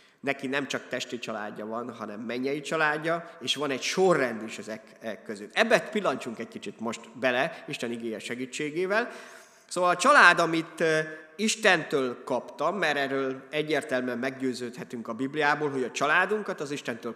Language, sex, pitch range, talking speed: Hungarian, male, 130-175 Hz, 145 wpm